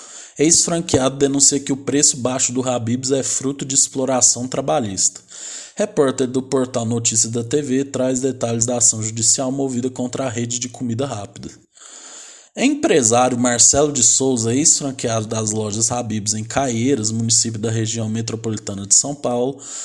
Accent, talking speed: Brazilian, 145 wpm